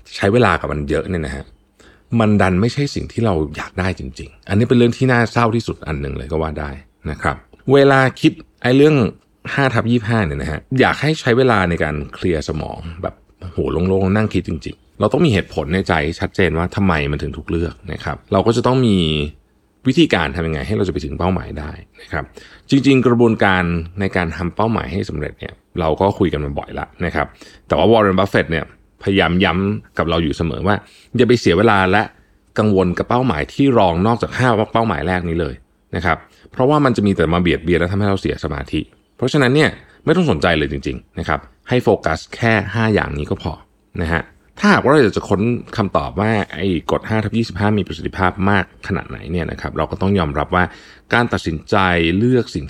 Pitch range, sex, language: 85-115 Hz, male, Thai